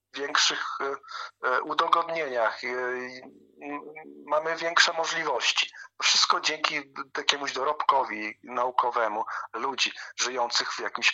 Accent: native